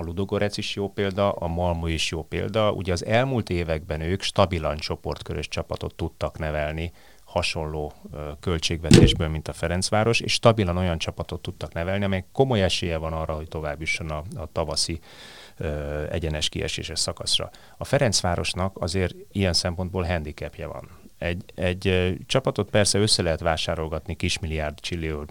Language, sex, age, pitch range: Hungarian, male, 30-49, 80-95 Hz